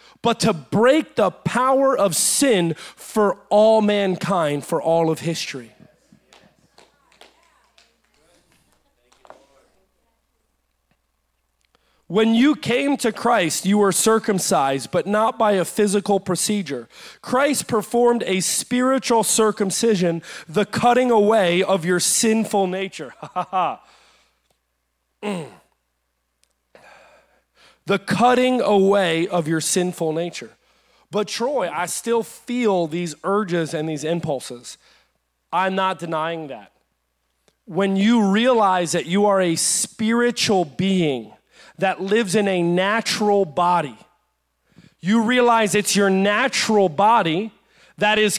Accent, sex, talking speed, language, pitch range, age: American, male, 110 wpm, English, 170-220 Hz, 30-49